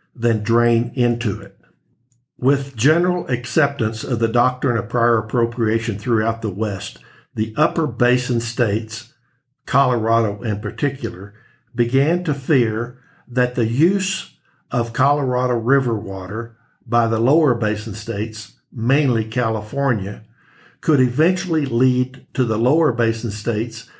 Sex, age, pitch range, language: male, 60-79, 115-135 Hz, English